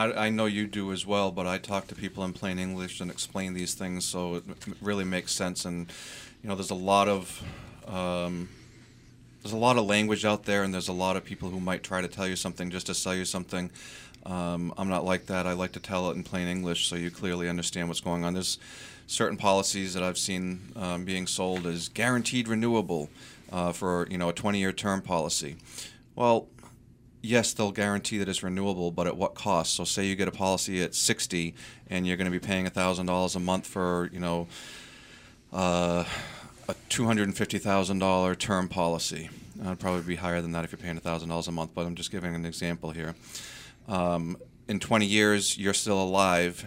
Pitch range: 90-100 Hz